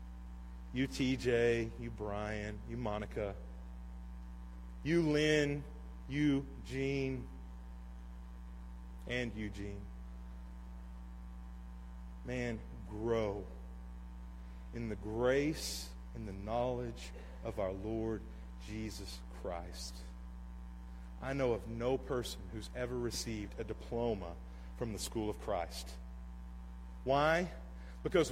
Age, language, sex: 40-59, English, male